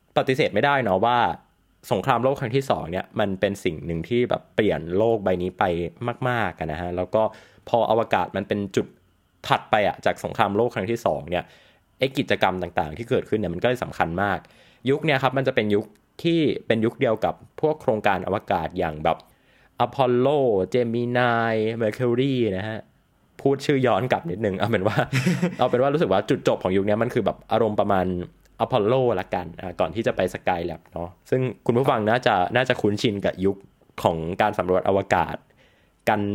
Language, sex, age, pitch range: Thai, male, 20-39, 95-125 Hz